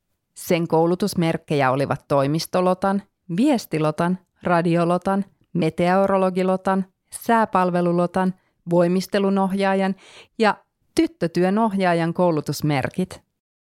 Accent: native